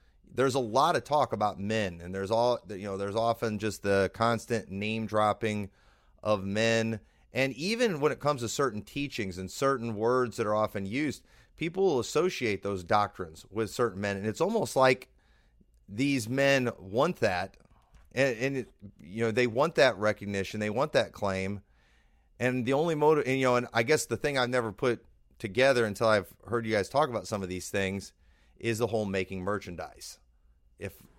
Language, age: English, 30-49